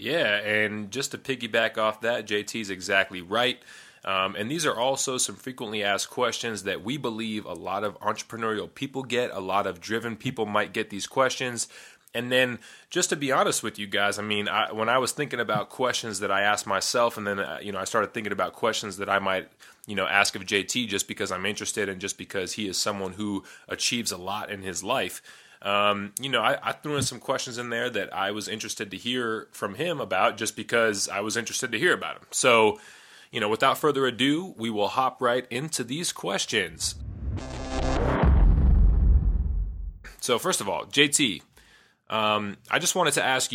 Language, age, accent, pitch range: English, 30-49, American, 100-125 Hz